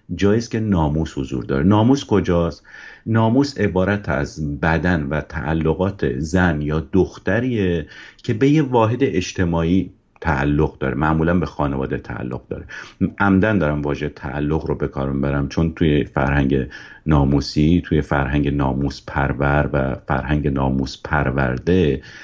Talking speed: 125 wpm